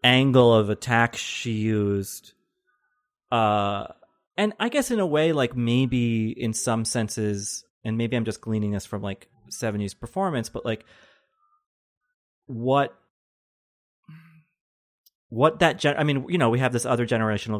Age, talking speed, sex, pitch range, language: 30-49, 140 wpm, male, 105-125 Hz, English